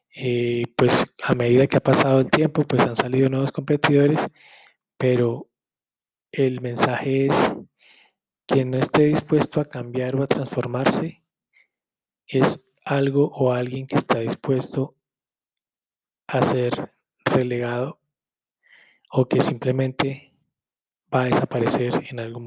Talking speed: 120 wpm